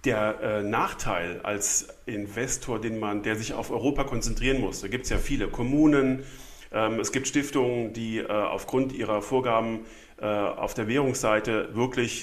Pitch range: 110-130 Hz